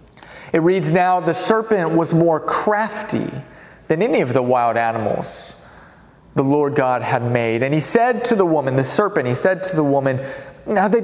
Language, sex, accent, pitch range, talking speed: English, male, American, 155-220 Hz, 180 wpm